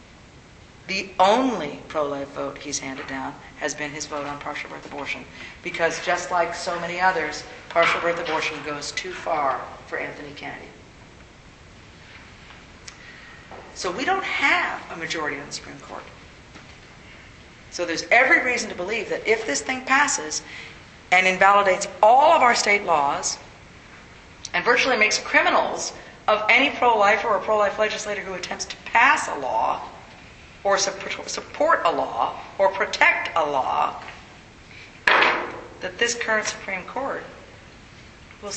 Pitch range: 165-205 Hz